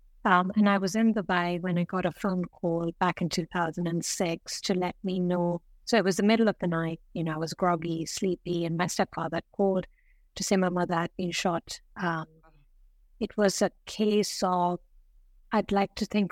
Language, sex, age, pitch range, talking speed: English, female, 50-69, 175-205 Hz, 200 wpm